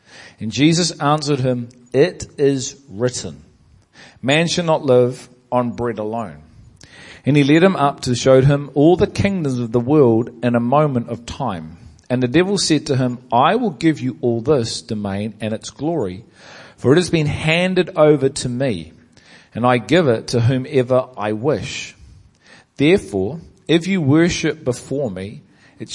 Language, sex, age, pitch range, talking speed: English, male, 40-59, 120-145 Hz, 165 wpm